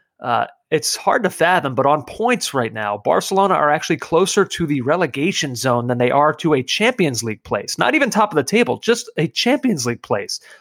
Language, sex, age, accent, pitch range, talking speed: English, male, 30-49, American, 125-160 Hz, 210 wpm